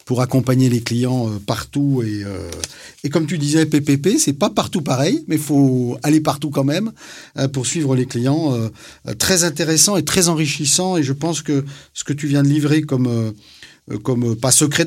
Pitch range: 125-155 Hz